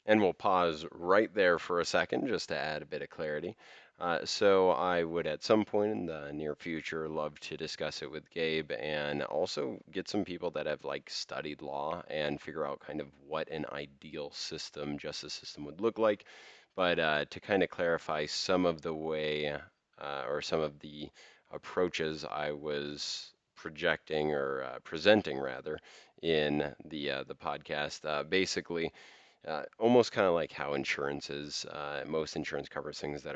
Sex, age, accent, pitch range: male, 30-49, American, 75-90 Hz